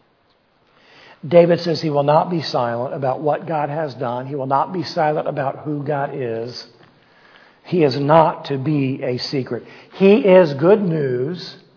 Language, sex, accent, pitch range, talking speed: English, male, American, 135-175 Hz, 165 wpm